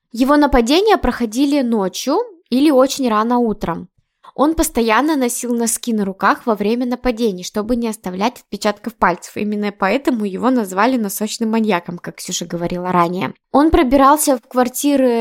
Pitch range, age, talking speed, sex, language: 215-275 Hz, 20-39, 140 wpm, female, Russian